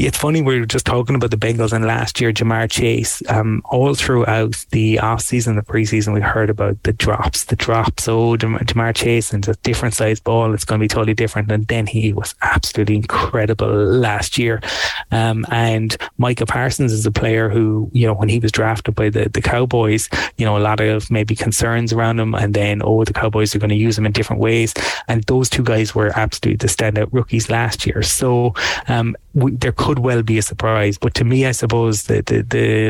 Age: 20-39